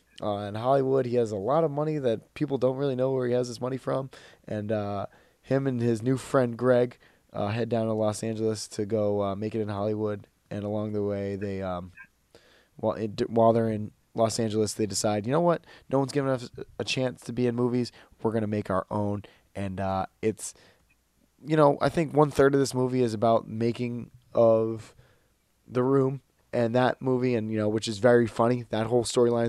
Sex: male